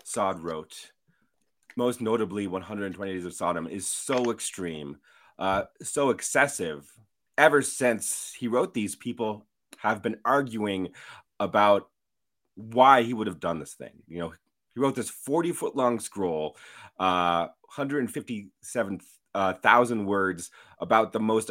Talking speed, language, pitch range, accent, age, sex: 130 wpm, English, 95-125 Hz, American, 30-49, male